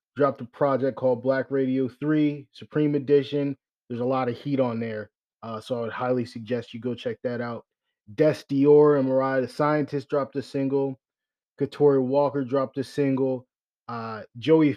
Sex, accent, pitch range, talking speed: male, American, 120-140 Hz, 175 wpm